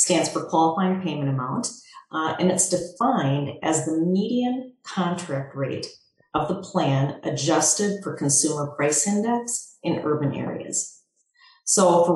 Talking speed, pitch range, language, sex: 135 wpm, 145-190 Hz, English, female